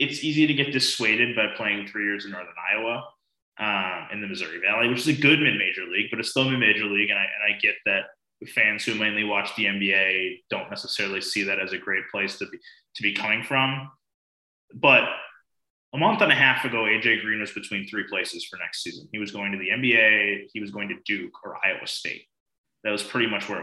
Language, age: English, 20-39